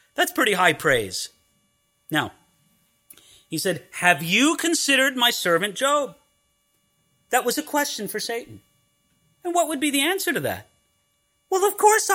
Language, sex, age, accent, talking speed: English, male, 40-59, American, 150 wpm